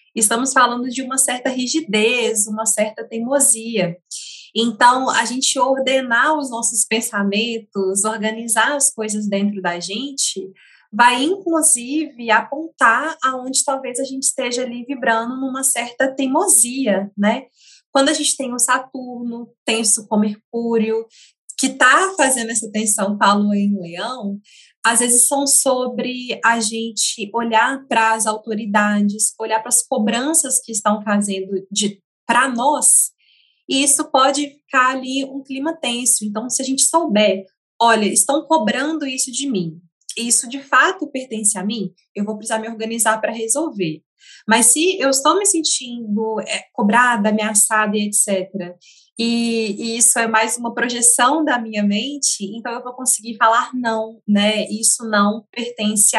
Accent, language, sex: Brazilian, Portuguese, female